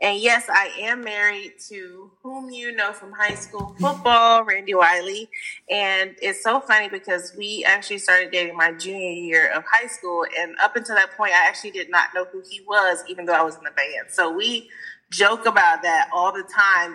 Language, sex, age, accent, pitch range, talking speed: English, female, 30-49, American, 180-230 Hz, 205 wpm